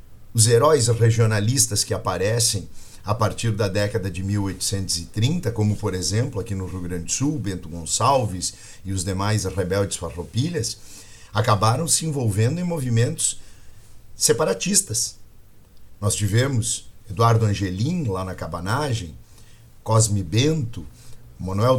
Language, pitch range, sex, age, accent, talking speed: Portuguese, 105-135 Hz, male, 50-69, Brazilian, 120 wpm